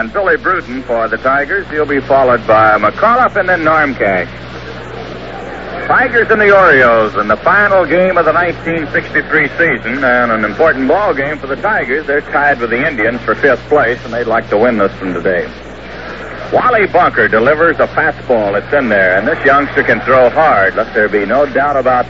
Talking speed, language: 195 wpm, English